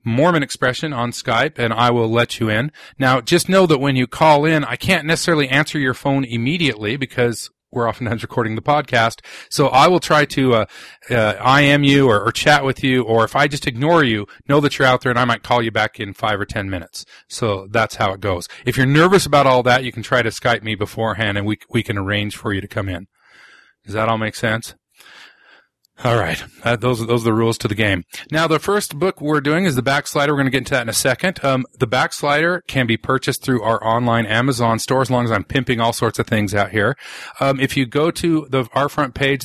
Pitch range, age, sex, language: 110-140 Hz, 40-59, male, English